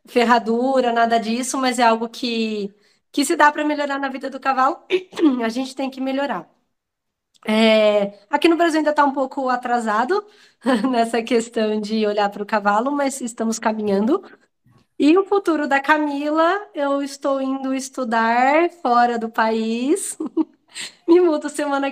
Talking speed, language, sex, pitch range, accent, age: 150 wpm, Portuguese, female, 230-285 Hz, Brazilian, 20-39